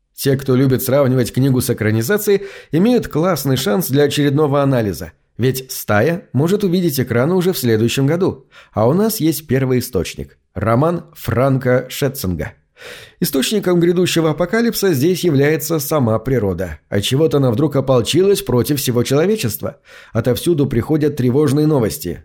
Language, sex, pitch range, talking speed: Russian, male, 120-160 Hz, 135 wpm